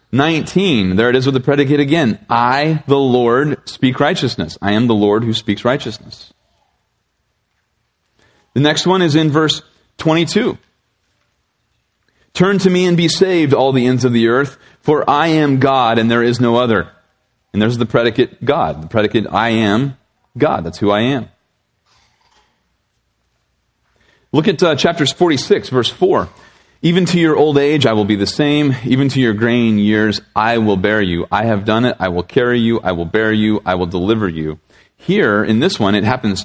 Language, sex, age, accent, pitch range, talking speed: English, male, 30-49, American, 105-145 Hz, 180 wpm